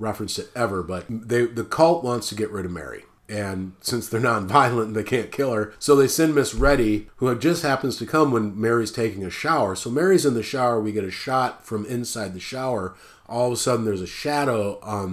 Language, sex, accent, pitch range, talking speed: English, male, American, 110-145 Hz, 245 wpm